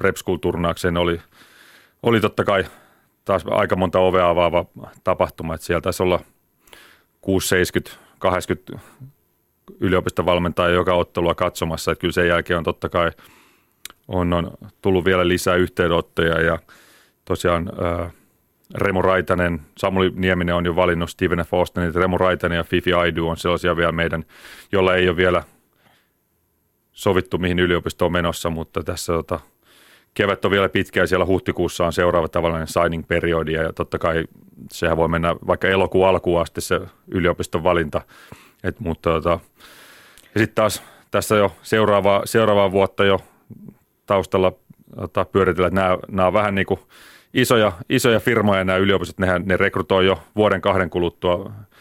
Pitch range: 85-95 Hz